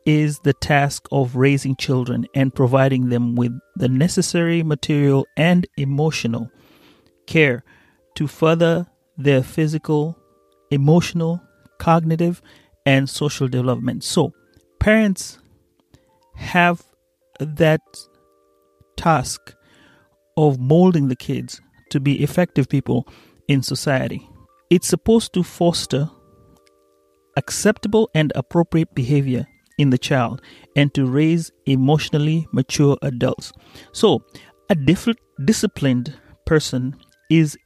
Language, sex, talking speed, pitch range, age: Swahili, male, 100 wpm, 130-165 Hz, 30-49